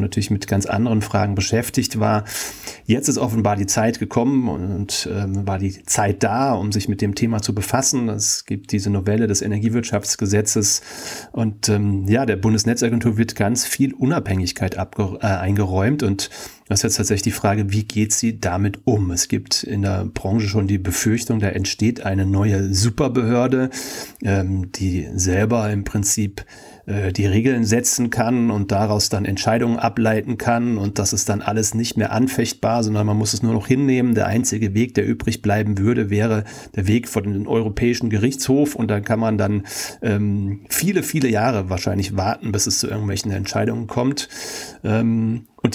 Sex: male